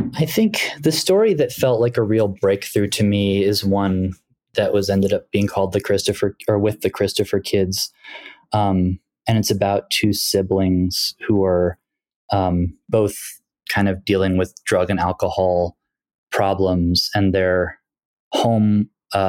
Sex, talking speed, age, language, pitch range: male, 150 wpm, 20-39, English, 90-105 Hz